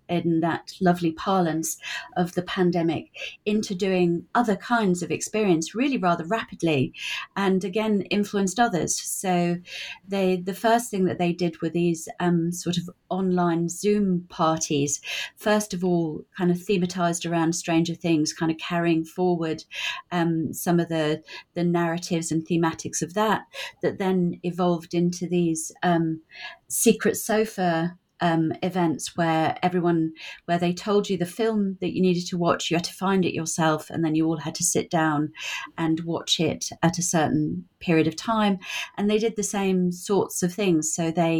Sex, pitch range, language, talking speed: female, 165-190 Hz, English, 165 wpm